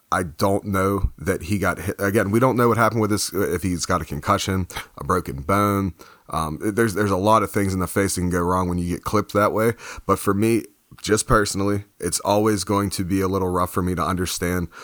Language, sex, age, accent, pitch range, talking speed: English, male, 30-49, American, 90-105 Hz, 245 wpm